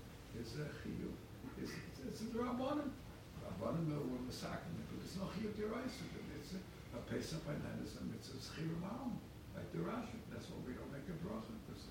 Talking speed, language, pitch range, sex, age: 110 wpm, English, 135-195 Hz, male, 60-79